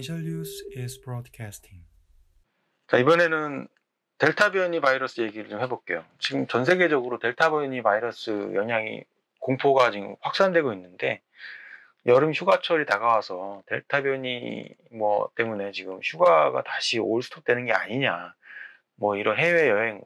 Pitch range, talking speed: 125-200 Hz, 115 wpm